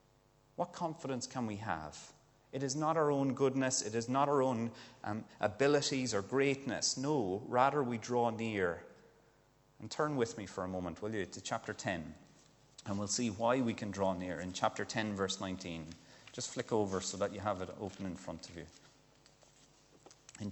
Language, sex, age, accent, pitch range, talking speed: English, male, 30-49, Irish, 95-130 Hz, 185 wpm